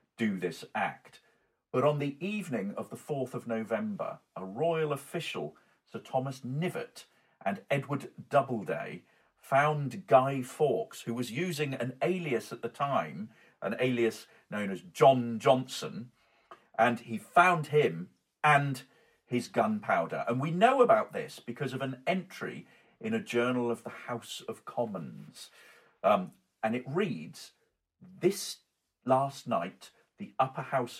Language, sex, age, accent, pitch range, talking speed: English, male, 40-59, British, 110-155 Hz, 140 wpm